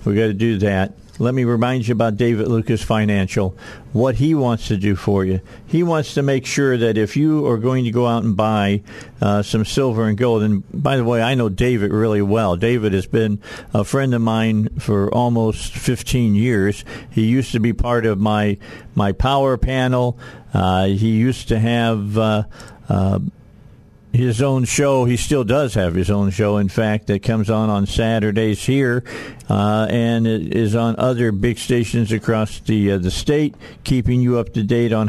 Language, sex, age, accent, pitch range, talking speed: English, male, 50-69, American, 105-130 Hz, 195 wpm